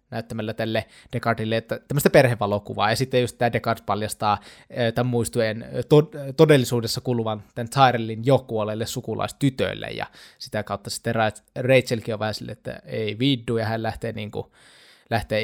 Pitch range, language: 110-125 Hz, Finnish